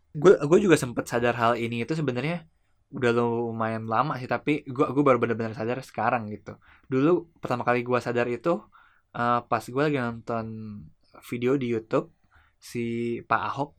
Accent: native